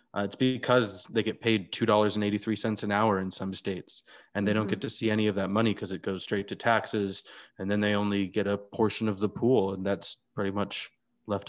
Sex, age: male, 20-39